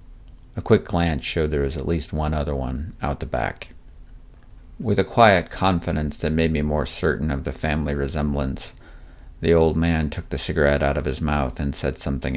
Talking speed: 195 wpm